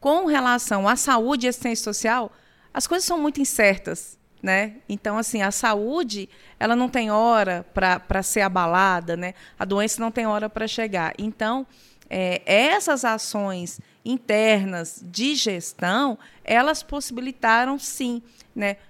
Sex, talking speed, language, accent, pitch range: female, 135 wpm, Portuguese, Brazilian, 205-245 Hz